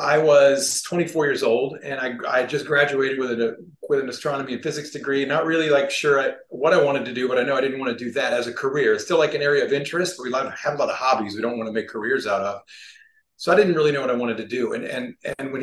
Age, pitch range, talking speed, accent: 40-59, 120-175 Hz, 290 wpm, American